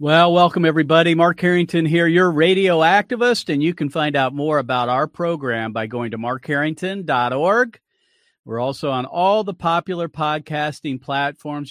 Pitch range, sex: 130-170 Hz, male